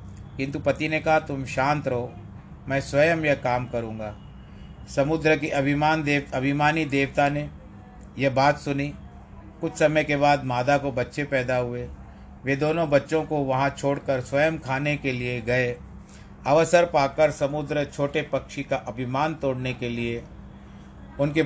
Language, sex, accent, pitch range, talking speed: Hindi, male, native, 130-150 Hz, 150 wpm